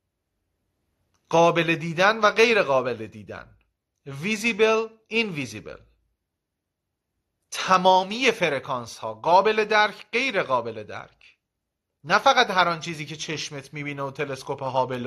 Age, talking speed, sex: 30-49, 105 wpm, male